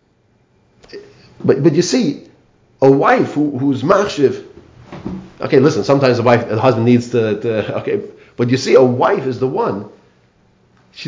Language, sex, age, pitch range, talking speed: English, male, 40-59, 110-145 Hz, 150 wpm